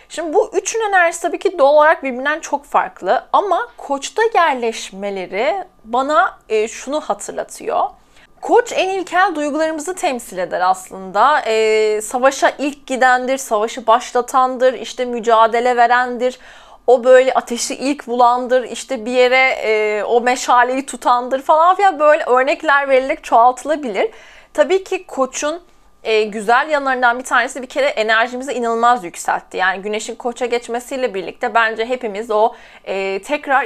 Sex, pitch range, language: female, 230-285 Hz, Turkish